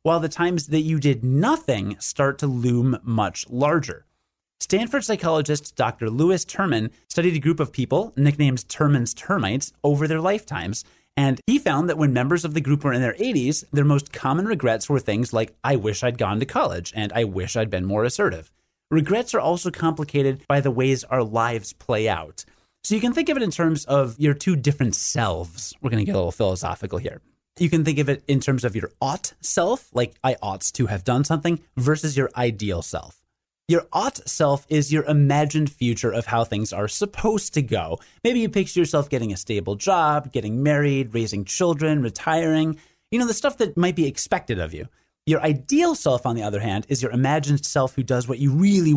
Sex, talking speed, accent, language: male, 205 wpm, American, English